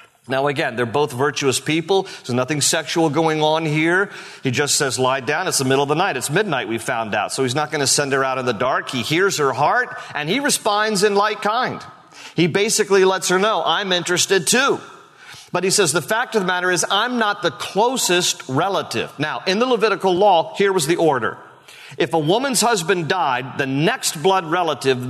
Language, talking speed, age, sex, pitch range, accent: English, 215 wpm, 50-69, male, 140-180 Hz, American